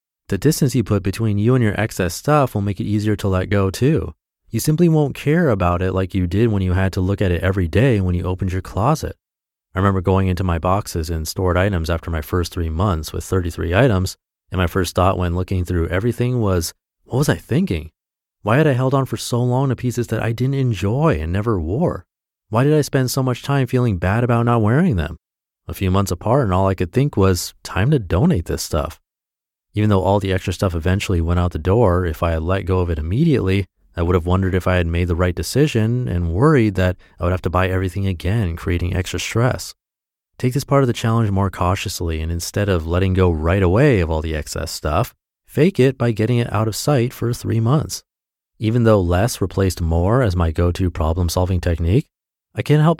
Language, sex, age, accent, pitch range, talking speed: English, male, 30-49, American, 90-120 Hz, 230 wpm